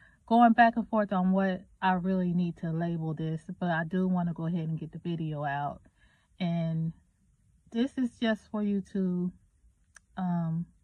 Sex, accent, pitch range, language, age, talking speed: female, American, 165-210 Hz, English, 30-49, 175 wpm